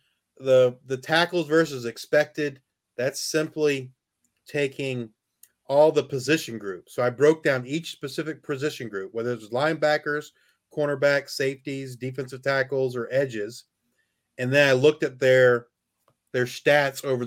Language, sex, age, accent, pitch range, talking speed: English, male, 40-59, American, 120-145 Hz, 130 wpm